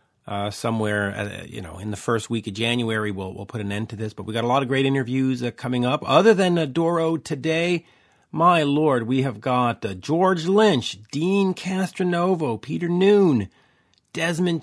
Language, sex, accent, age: English, male, American, 40-59